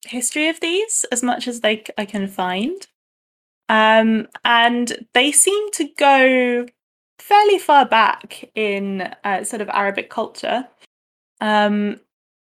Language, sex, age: English, female, 20-39